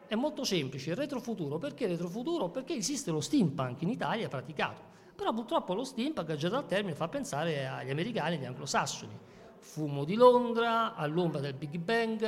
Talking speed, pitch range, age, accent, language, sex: 180 wpm, 155-225 Hz, 50-69, native, Italian, male